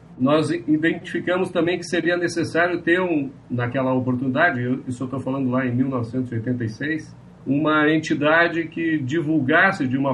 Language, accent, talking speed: English, Brazilian, 135 wpm